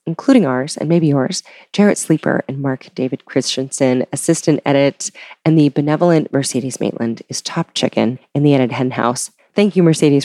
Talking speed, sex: 170 wpm, female